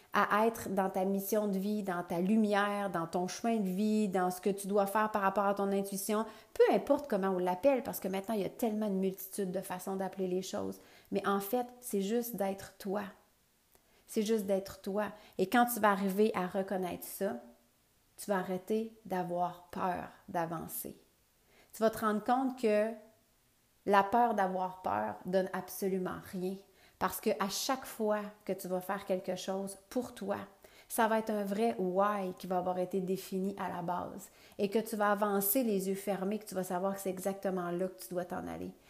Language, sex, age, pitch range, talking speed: French, female, 40-59, 190-215 Hz, 205 wpm